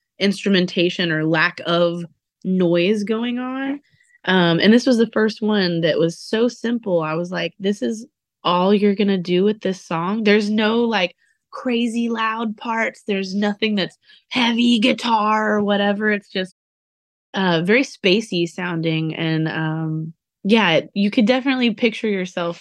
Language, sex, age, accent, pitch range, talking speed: English, female, 20-39, American, 175-220 Hz, 150 wpm